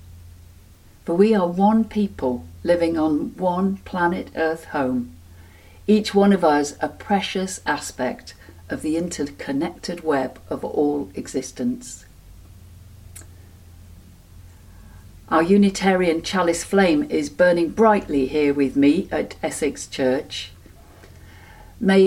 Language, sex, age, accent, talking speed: English, female, 50-69, British, 105 wpm